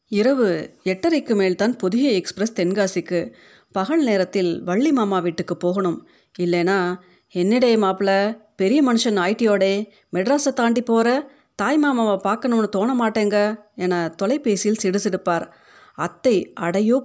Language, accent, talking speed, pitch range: Tamil, native, 105 wpm, 180-230 Hz